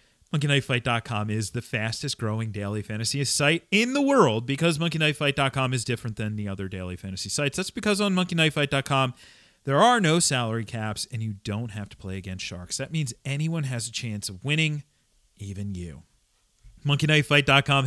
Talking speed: 165 wpm